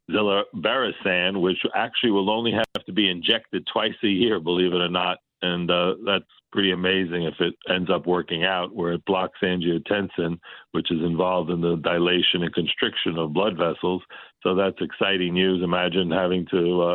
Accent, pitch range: American, 85-95 Hz